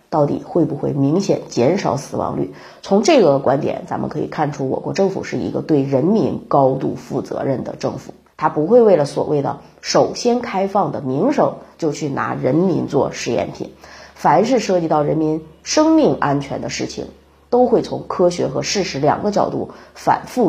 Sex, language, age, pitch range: female, Chinese, 30-49, 145-215 Hz